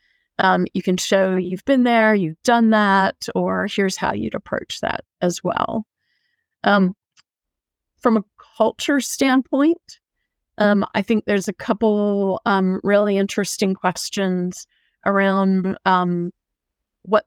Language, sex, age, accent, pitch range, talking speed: English, female, 30-49, American, 195-240 Hz, 125 wpm